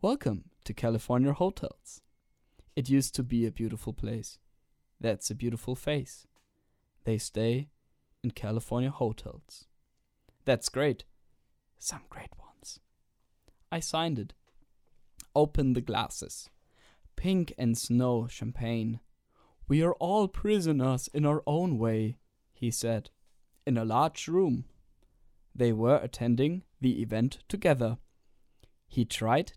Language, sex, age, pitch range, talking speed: German, male, 10-29, 110-145 Hz, 115 wpm